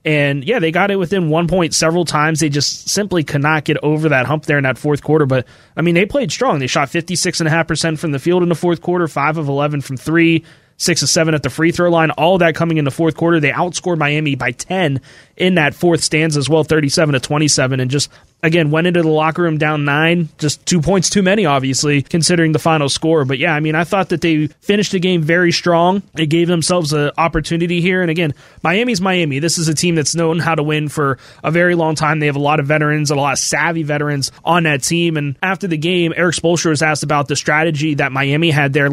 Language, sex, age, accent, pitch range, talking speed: English, male, 30-49, American, 145-170 Hz, 250 wpm